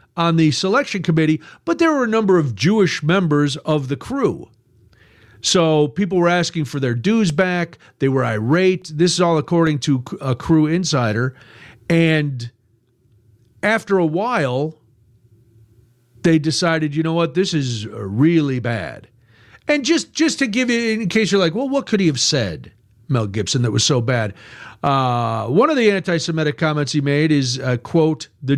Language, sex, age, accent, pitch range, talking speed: English, male, 50-69, American, 130-195 Hz, 170 wpm